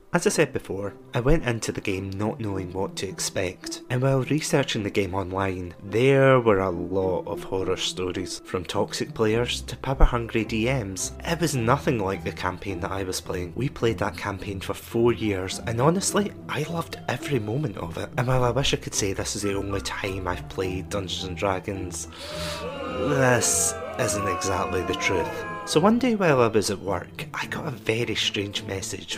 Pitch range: 95-125 Hz